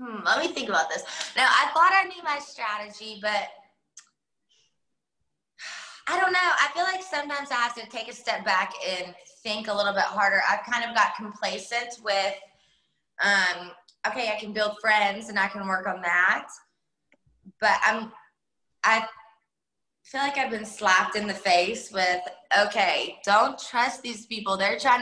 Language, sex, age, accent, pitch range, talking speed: English, female, 20-39, American, 195-235 Hz, 170 wpm